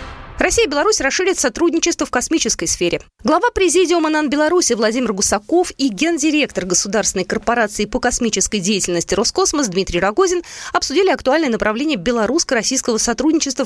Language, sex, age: Russian, female, 20-39